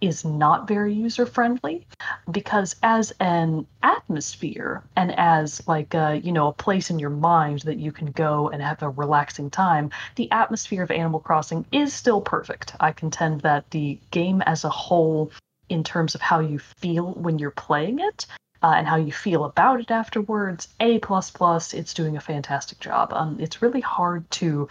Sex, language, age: female, English, 30-49